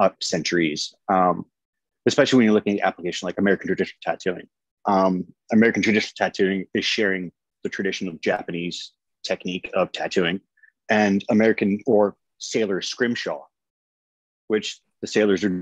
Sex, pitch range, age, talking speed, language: male, 90-110 Hz, 30-49, 130 wpm, English